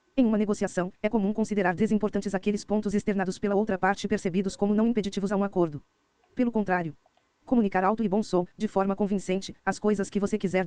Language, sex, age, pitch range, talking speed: Portuguese, female, 20-39, 190-210 Hz, 195 wpm